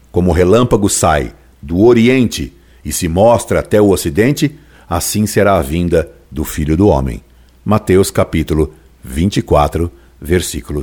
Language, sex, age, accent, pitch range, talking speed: Portuguese, male, 60-79, Brazilian, 80-115 Hz, 135 wpm